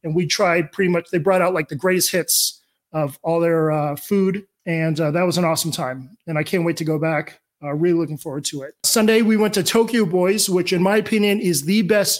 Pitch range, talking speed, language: 165-200 Hz, 245 wpm, English